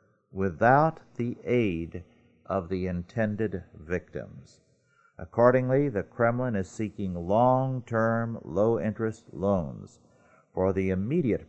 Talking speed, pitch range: 105 wpm, 95-120 Hz